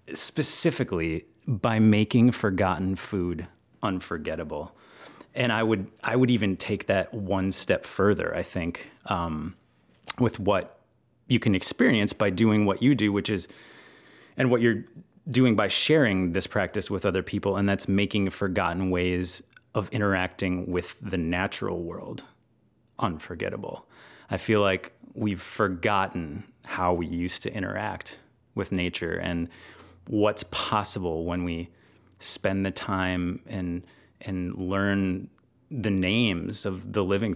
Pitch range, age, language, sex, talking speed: 90-115 Hz, 30-49, English, male, 135 wpm